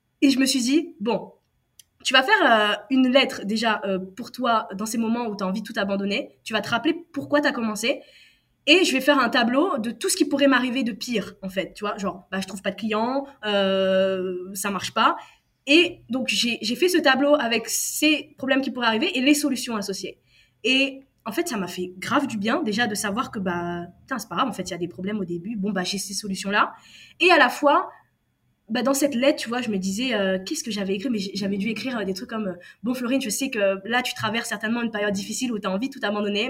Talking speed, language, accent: 265 wpm, French, French